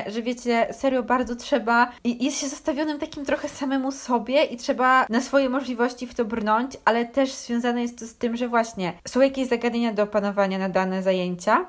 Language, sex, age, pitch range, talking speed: Polish, female, 20-39, 220-260 Hz, 195 wpm